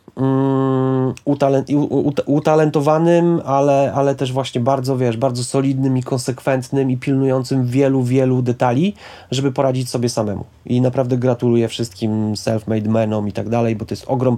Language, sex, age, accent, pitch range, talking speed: Polish, male, 30-49, native, 115-135 Hz, 140 wpm